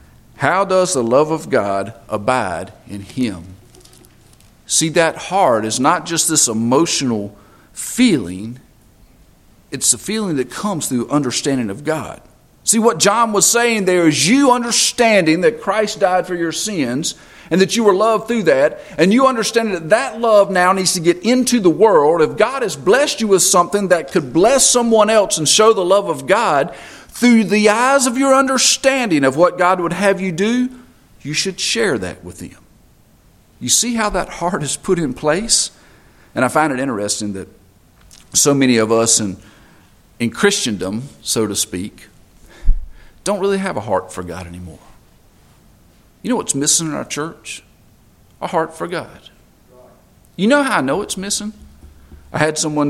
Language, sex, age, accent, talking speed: English, male, 50-69, American, 175 wpm